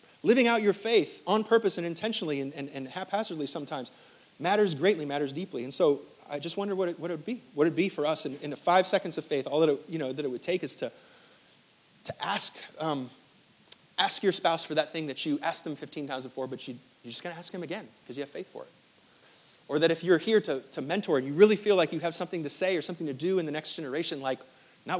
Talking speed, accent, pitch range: 265 wpm, American, 155-215 Hz